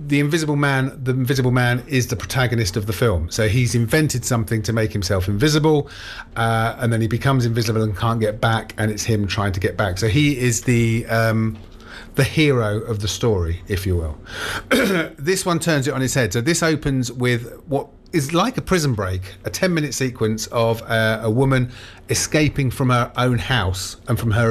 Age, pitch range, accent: 30-49, 105-130 Hz, British